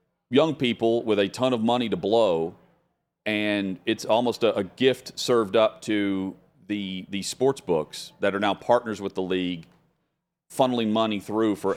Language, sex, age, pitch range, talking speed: English, male, 40-59, 90-115 Hz, 170 wpm